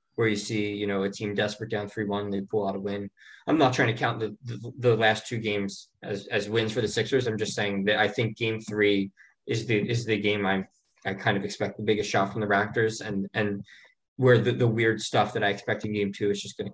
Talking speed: 260 wpm